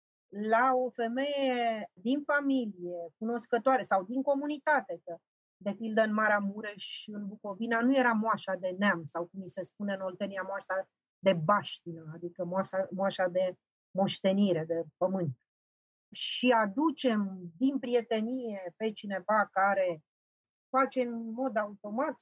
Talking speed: 130 wpm